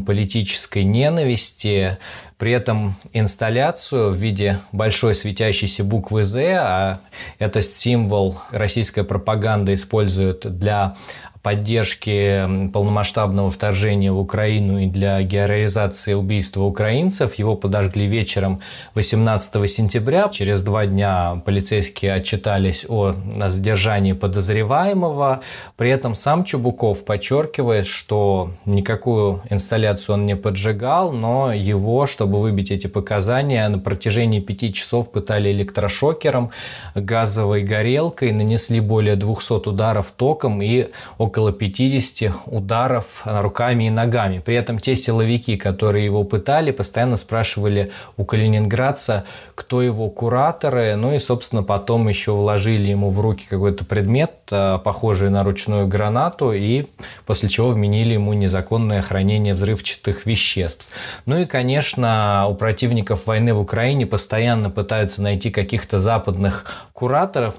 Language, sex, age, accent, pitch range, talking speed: Russian, male, 20-39, native, 100-115 Hz, 115 wpm